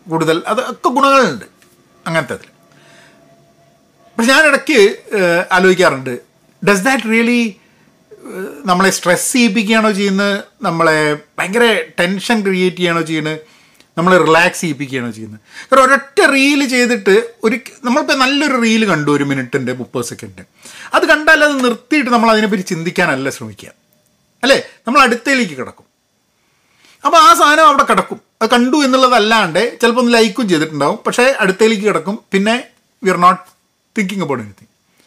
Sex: male